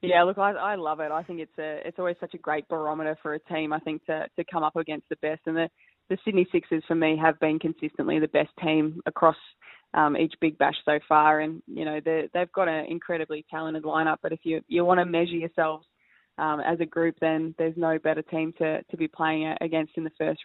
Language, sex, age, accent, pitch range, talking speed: English, female, 20-39, Australian, 155-170 Hz, 245 wpm